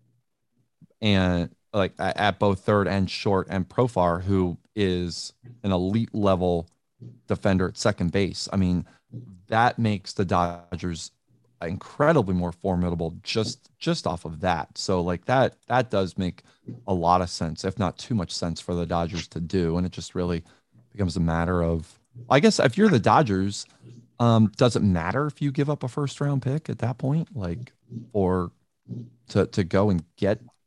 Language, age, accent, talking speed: English, 30-49, American, 170 wpm